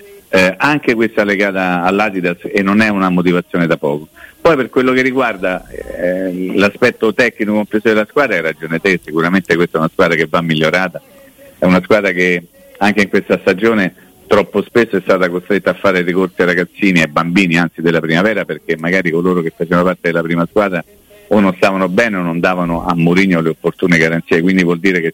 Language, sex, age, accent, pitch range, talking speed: Italian, male, 50-69, native, 85-105 Hz, 200 wpm